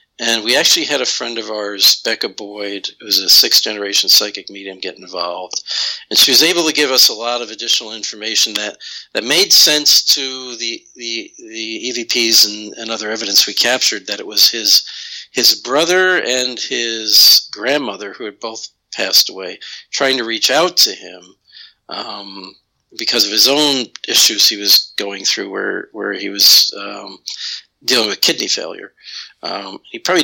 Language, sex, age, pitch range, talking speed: English, male, 50-69, 105-145 Hz, 175 wpm